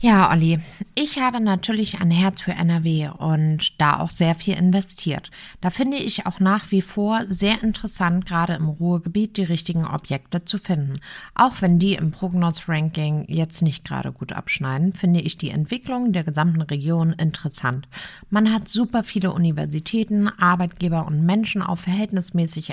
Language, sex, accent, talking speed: German, female, German, 160 wpm